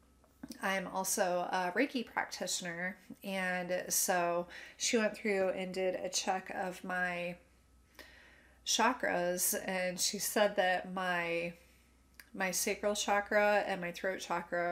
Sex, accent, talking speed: female, American, 120 wpm